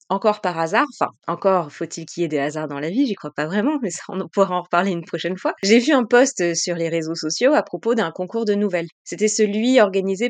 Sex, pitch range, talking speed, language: female, 170-235 Hz, 255 wpm, French